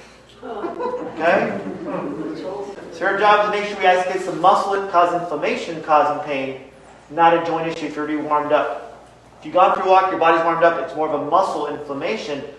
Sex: male